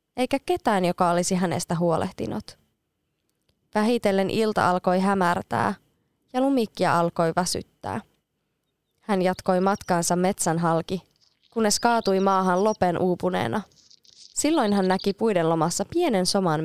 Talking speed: 110 wpm